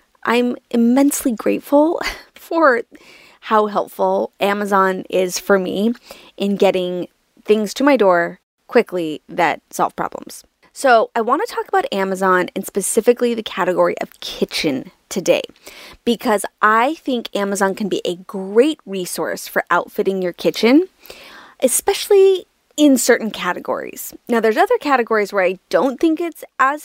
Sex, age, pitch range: female, 20-39, 190-265 Hz